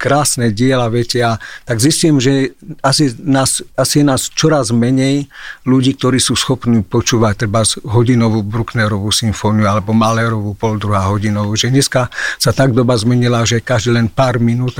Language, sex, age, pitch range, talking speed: Slovak, male, 50-69, 115-130 Hz, 155 wpm